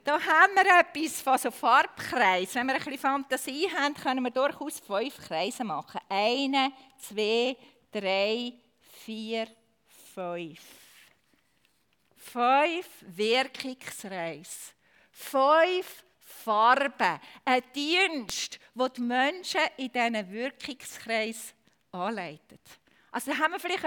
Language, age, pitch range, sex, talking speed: German, 40-59, 230-295 Hz, female, 105 wpm